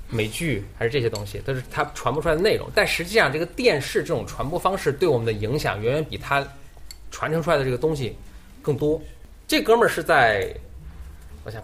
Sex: male